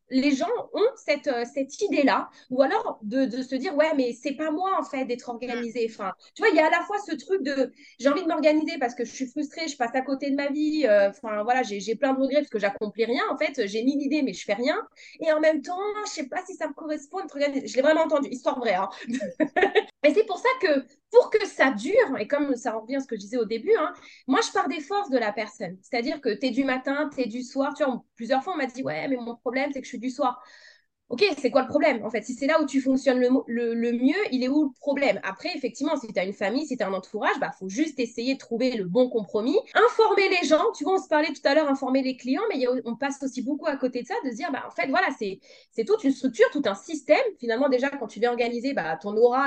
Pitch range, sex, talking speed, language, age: 235-305 Hz, female, 285 wpm, French, 20-39